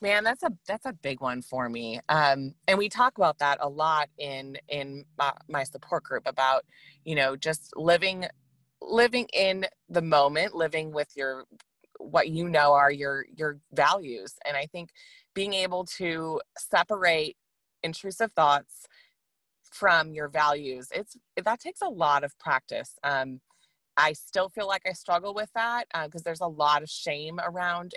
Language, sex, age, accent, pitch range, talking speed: English, female, 20-39, American, 145-190 Hz, 165 wpm